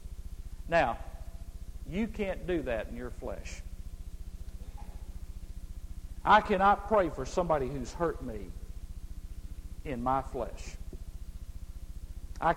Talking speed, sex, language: 95 wpm, male, English